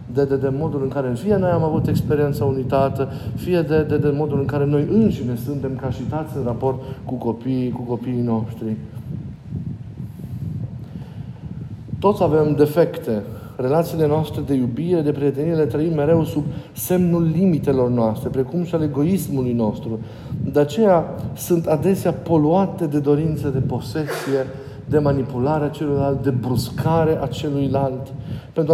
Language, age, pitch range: Romanian, 50-69, 135-160 Hz